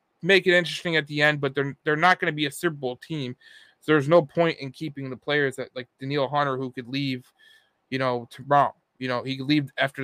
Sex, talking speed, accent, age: male, 240 wpm, American, 20-39